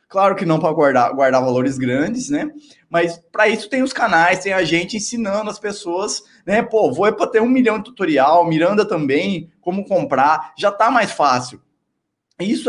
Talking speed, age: 190 wpm, 20-39